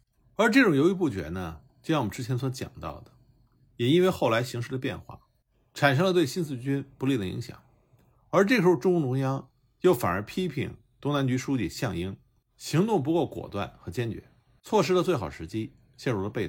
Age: 50-69